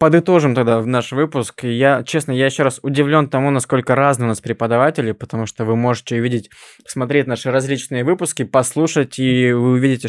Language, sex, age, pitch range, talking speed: Russian, male, 20-39, 125-145 Hz, 180 wpm